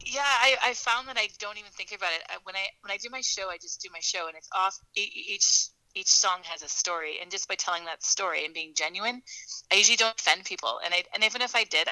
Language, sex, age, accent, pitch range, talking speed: English, female, 30-49, American, 175-215 Hz, 270 wpm